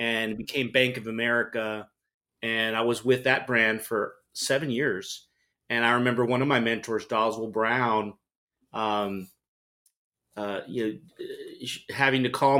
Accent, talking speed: American, 145 wpm